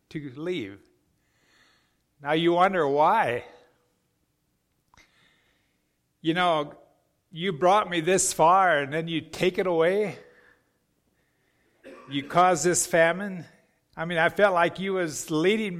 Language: English